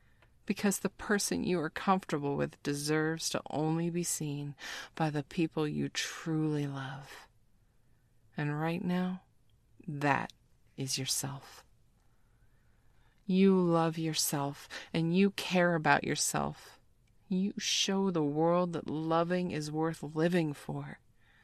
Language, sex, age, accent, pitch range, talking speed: English, female, 30-49, American, 125-175 Hz, 120 wpm